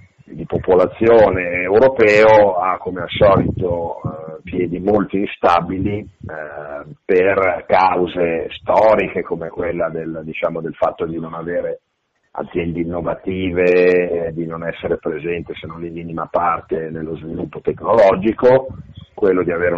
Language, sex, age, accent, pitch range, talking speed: Italian, male, 40-59, native, 80-95 Hz, 125 wpm